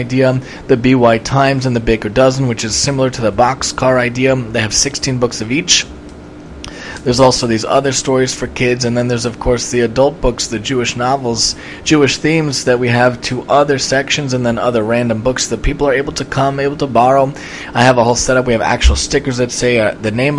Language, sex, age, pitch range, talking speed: English, male, 20-39, 120-135 Hz, 220 wpm